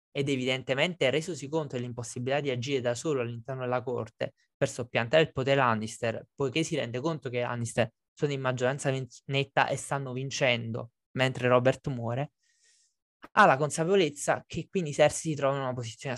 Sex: male